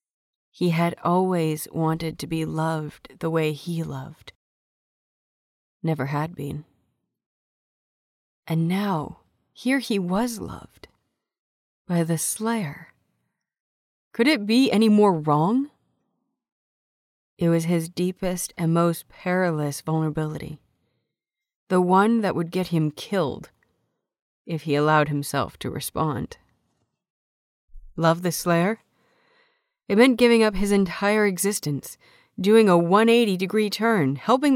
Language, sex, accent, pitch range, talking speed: English, female, American, 155-205 Hz, 115 wpm